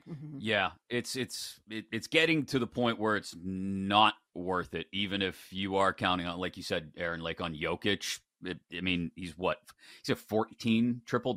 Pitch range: 100-130 Hz